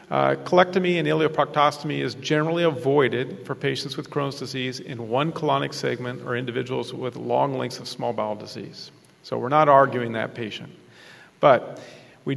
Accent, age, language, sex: American, 40-59, English, male